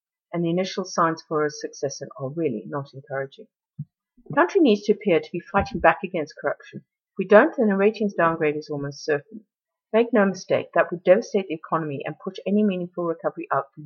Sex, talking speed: female, 210 wpm